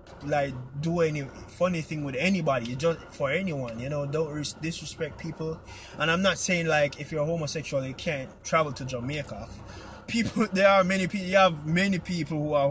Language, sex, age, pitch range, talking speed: English, male, 20-39, 140-180 Hz, 195 wpm